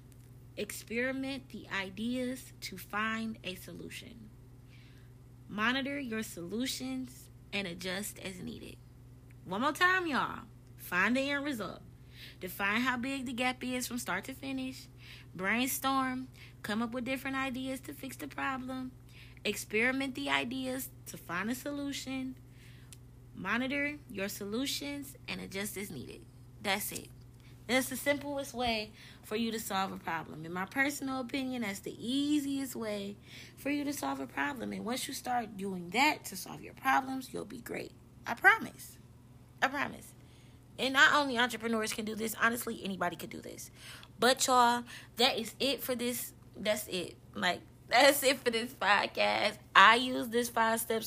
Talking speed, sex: 155 wpm, female